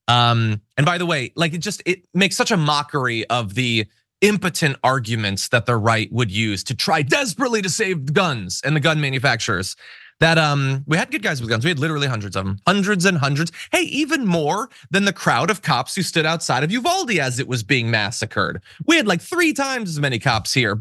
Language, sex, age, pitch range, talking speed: English, male, 20-39, 130-195 Hz, 220 wpm